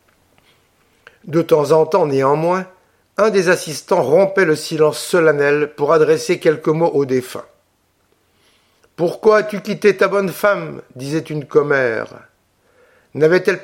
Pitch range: 150-195 Hz